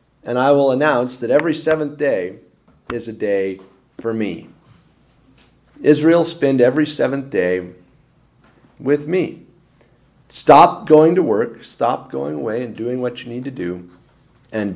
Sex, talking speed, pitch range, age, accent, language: male, 140 wpm, 110-155 Hz, 40-59, American, English